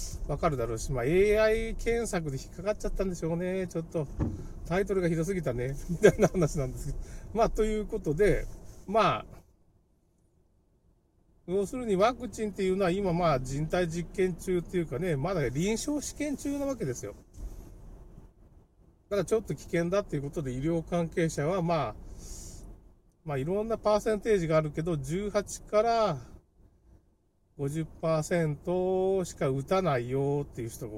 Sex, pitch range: male, 125-195 Hz